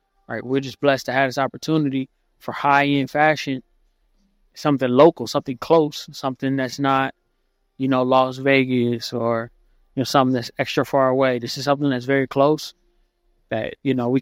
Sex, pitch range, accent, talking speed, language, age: male, 130-150 Hz, American, 170 wpm, English, 20-39